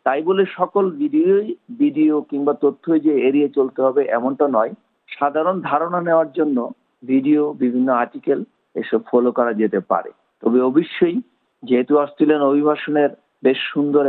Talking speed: 135 wpm